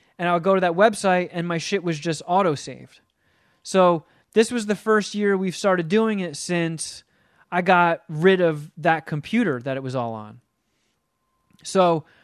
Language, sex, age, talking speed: English, male, 20-39, 175 wpm